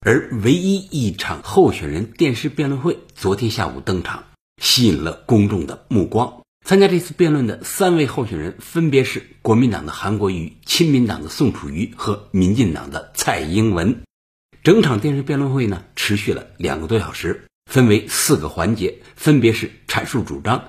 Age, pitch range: 60-79, 100-145 Hz